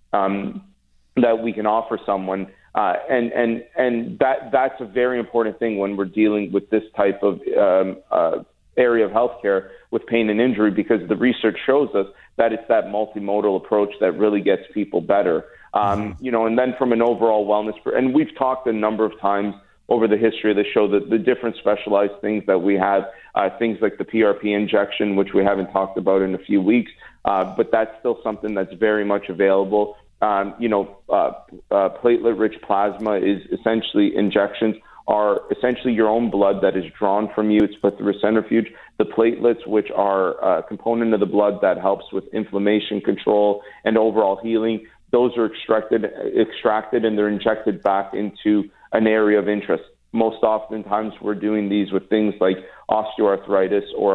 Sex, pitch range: male, 100-115 Hz